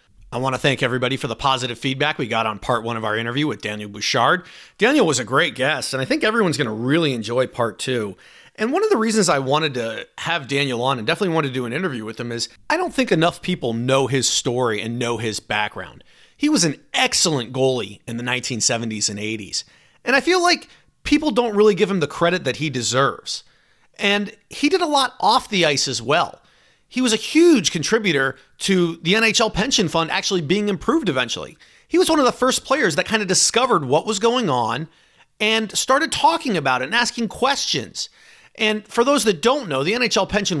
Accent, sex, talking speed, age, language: American, male, 220 wpm, 30-49, English